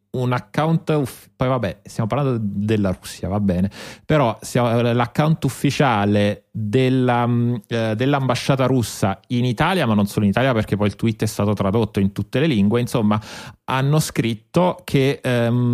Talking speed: 140 wpm